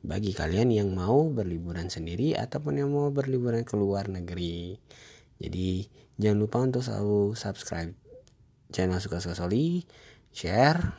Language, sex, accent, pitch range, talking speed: Indonesian, male, native, 95-120 Hz, 130 wpm